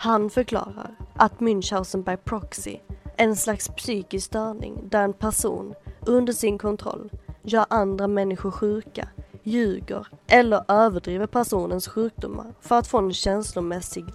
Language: Swedish